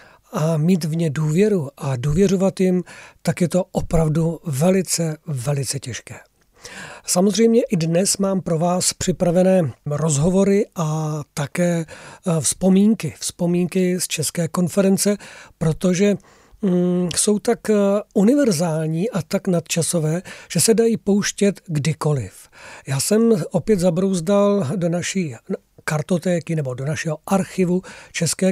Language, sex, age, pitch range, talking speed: Czech, male, 40-59, 160-195 Hz, 115 wpm